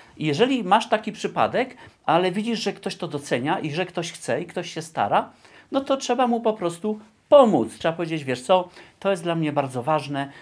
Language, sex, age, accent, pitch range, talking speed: Polish, male, 40-59, native, 150-195 Hz, 200 wpm